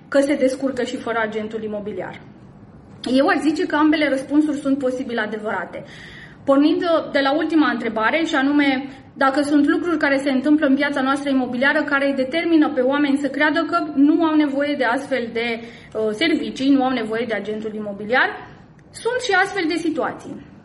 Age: 20-39